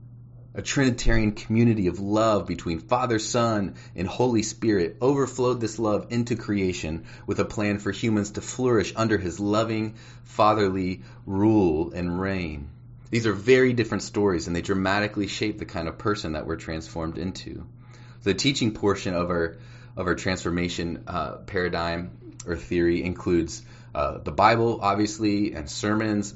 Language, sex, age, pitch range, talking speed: English, male, 30-49, 90-115 Hz, 155 wpm